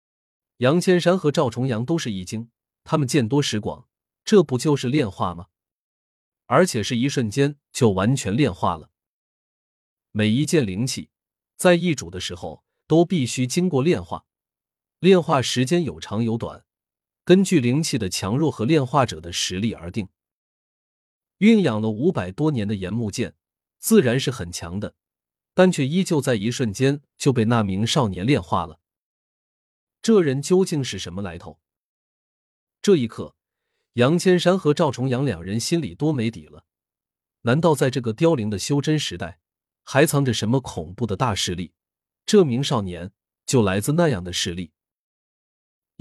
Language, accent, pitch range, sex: Chinese, native, 100-150 Hz, male